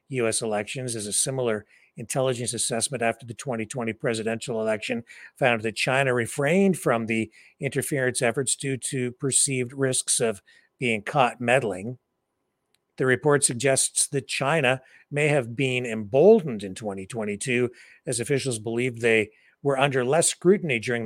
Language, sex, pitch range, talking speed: English, male, 115-145 Hz, 135 wpm